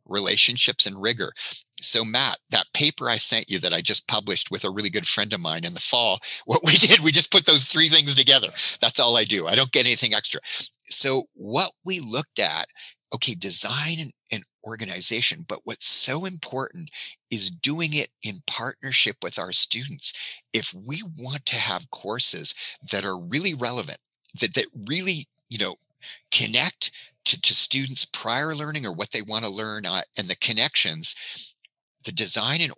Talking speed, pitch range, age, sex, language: 180 wpm, 115-155 Hz, 40-59, male, English